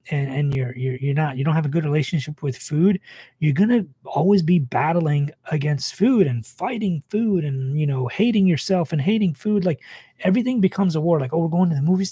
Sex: male